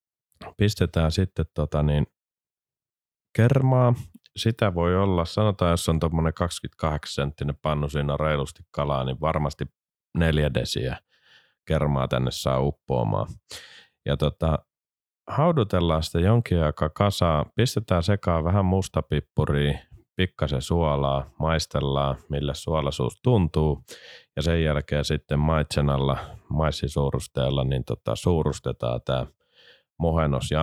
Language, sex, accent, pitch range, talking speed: Finnish, male, native, 70-90 Hz, 110 wpm